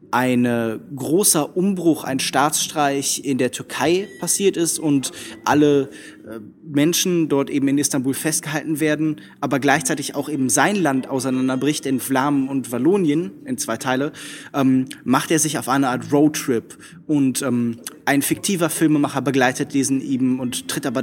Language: German